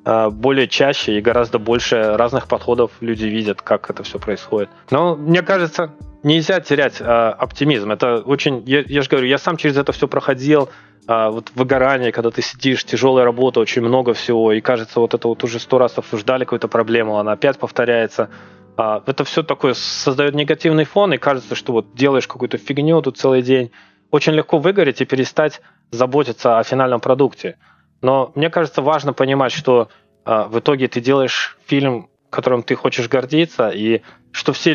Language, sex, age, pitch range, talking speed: Russian, male, 20-39, 115-145 Hz, 175 wpm